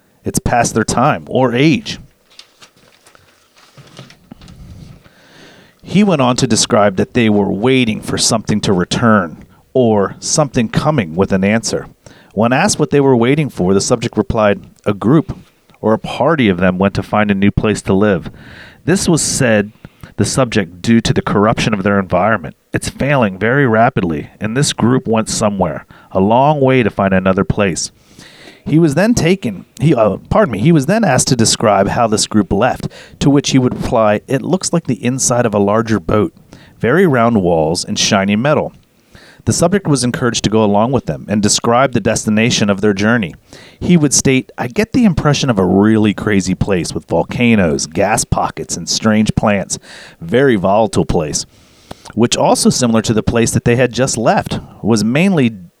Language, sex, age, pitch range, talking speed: English, male, 40-59, 105-135 Hz, 180 wpm